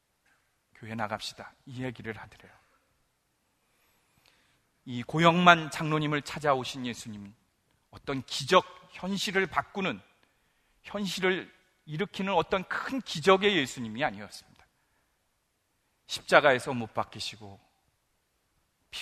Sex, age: male, 40-59